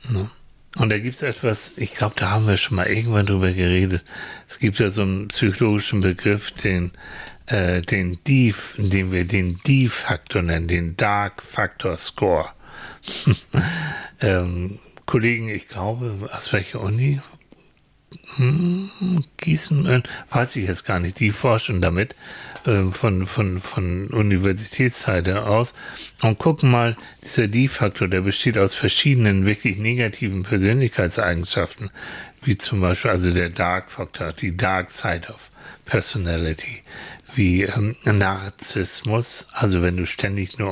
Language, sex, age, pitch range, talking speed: German, male, 60-79, 95-120 Hz, 130 wpm